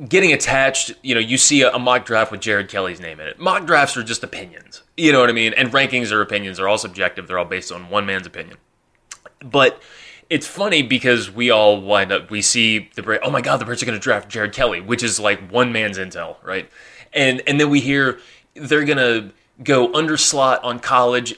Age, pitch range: 20-39, 110-140 Hz